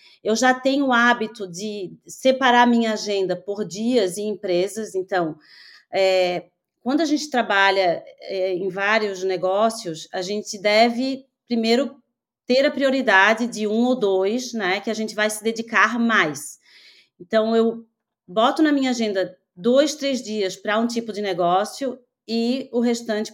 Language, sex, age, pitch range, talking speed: Portuguese, female, 30-49, 195-240 Hz, 150 wpm